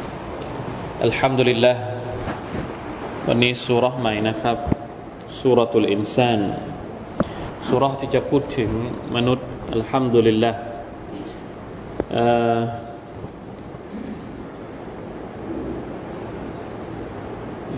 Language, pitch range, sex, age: Thai, 115-135 Hz, male, 30-49